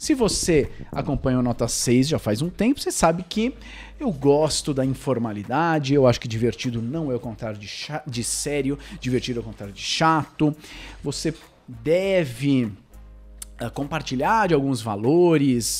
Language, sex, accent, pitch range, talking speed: Portuguese, male, Brazilian, 120-180 Hz, 150 wpm